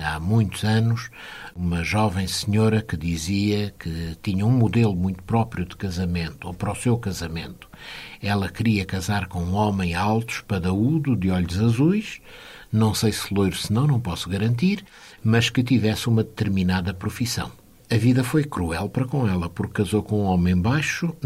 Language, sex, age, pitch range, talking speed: Portuguese, male, 60-79, 100-135 Hz, 170 wpm